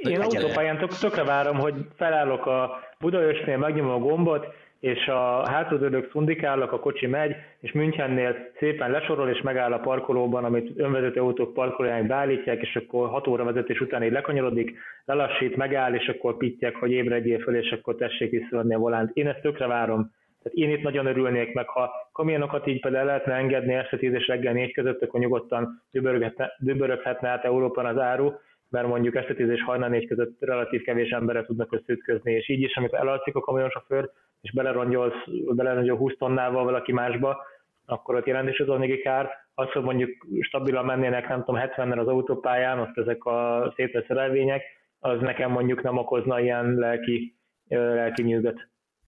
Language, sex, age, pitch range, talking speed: Hungarian, male, 20-39, 120-140 Hz, 165 wpm